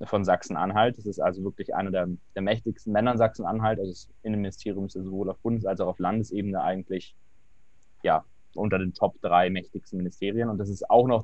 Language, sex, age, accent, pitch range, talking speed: German, male, 20-39, German, 95-110 Hz, 205 wpm